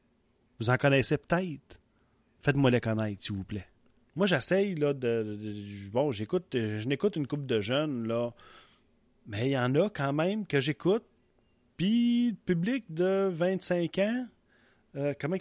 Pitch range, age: 115-155 Hz, 30-49